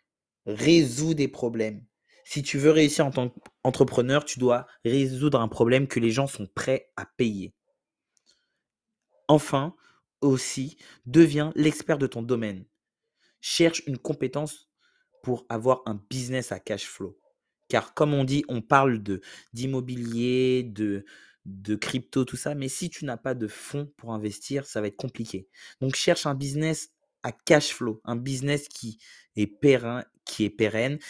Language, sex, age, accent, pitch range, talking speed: French, male, 20-39, French, 115-145 Hz, 155 wpm